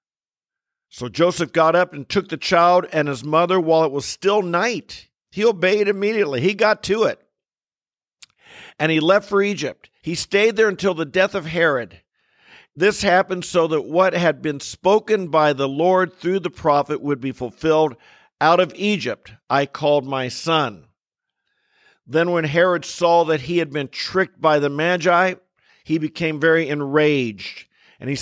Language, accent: English, American